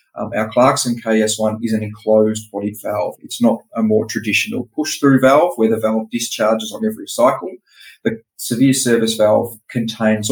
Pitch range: 110-125 Hz